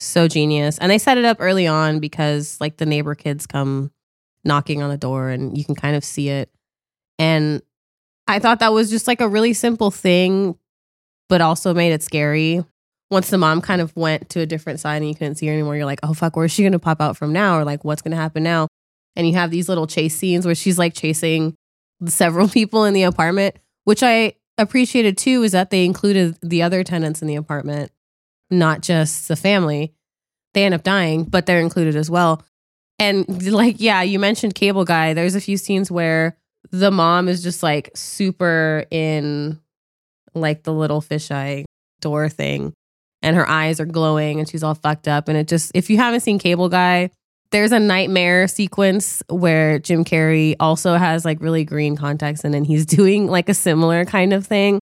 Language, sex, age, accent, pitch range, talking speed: English, female, 20-39, American, 150-185 Hz, 205 wpm